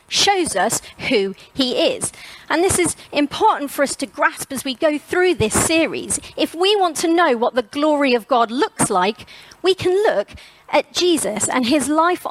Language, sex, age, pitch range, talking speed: English, female, 30-49, 225-320 Hz, 190 wpm